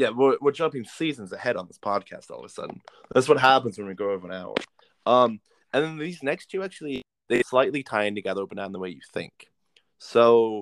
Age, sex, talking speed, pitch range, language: 20-39, male, 240 wpm, 105-130 Hz, English